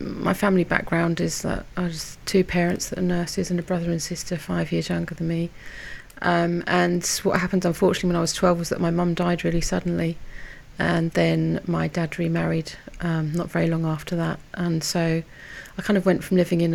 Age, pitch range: 30-49, 170-185 Hz